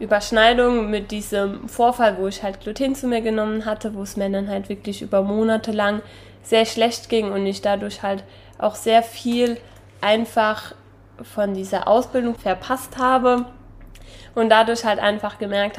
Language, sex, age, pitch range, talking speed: German, female, 20-39, 200-230 Hz, 160 wpm